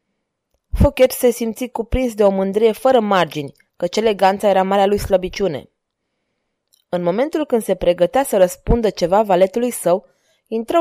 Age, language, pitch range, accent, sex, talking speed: 20-39, Romanian, 180-245 Hz, native, female, 145 wpm